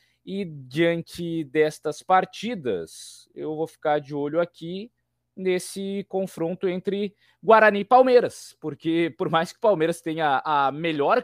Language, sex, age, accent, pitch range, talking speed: Portuguese, male, 20-39, Brazilian, 140-200 Hz, 135 wpm